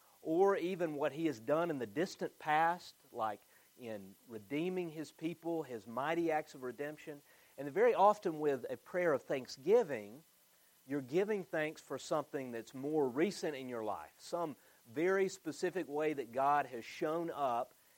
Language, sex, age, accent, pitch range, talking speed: English, male, 40-59, American, 125-160 Hz, 160 wpm